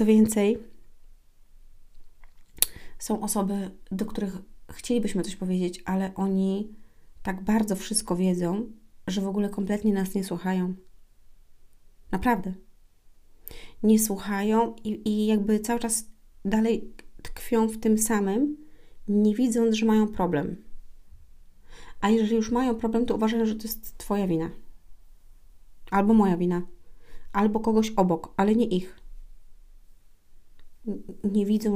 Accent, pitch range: native, 175-215 Hz